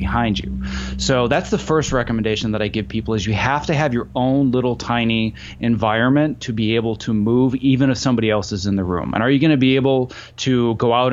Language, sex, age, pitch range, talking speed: English, male, 30-49, 110-130 Hz, 235 wpm